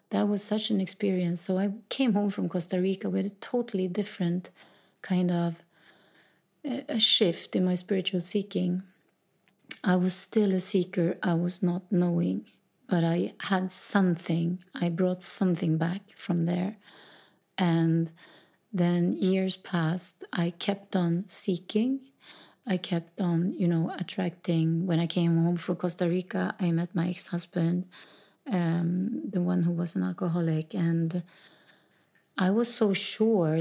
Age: 30-49